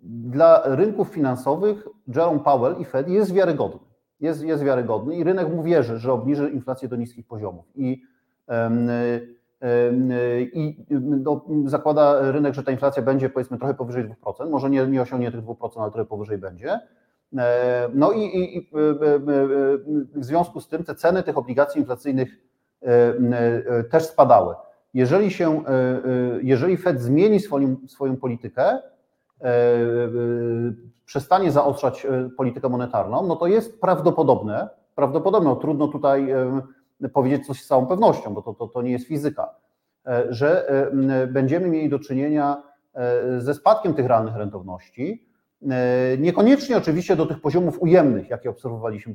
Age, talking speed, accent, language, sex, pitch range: 40-59, 135 wpm, native, Polish, male, 125-160 Hz